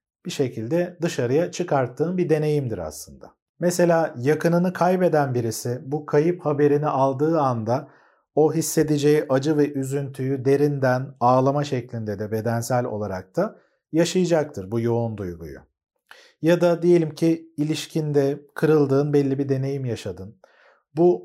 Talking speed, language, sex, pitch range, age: 120 wpm, Turkish, male, 120-155 Hz, 40-59